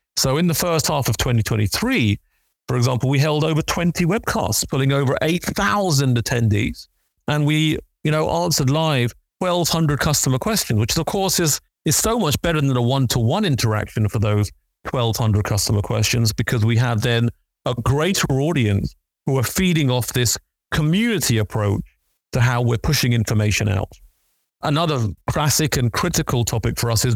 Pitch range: 110-140 Hz